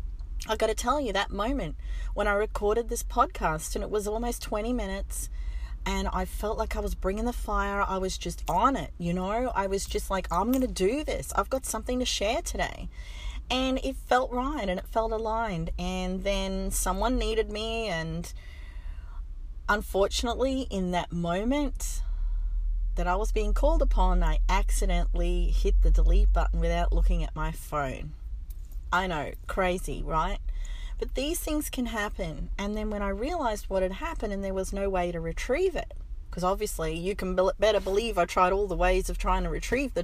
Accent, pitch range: Australian, 175-230 Hz